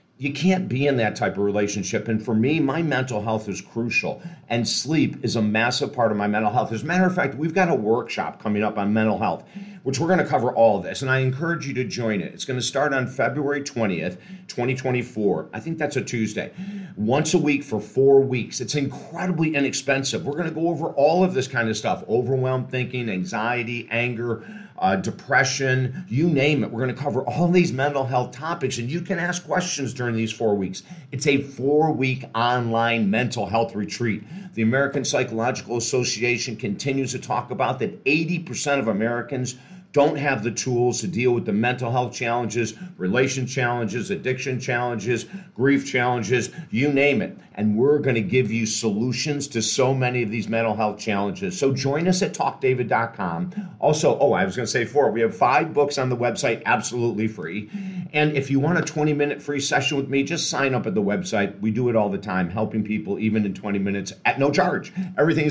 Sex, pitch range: male, 115-150 Hz